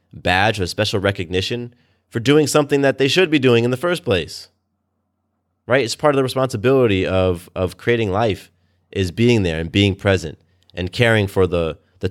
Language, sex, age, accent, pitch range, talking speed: English, male, 30-49, American, 90-110 Hz, 185 wpm